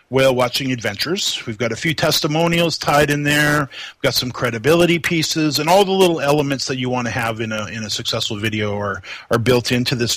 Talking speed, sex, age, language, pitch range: 220 wpm, male, 40-59, English, 115-150 Hz